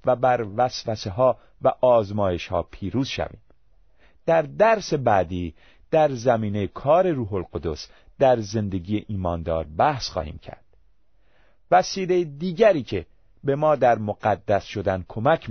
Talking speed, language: 125 wpm, Persian